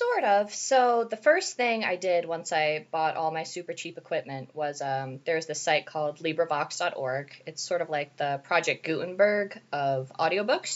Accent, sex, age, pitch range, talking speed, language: American, female, 20-39, 140-175 Hz, 180 wpm, English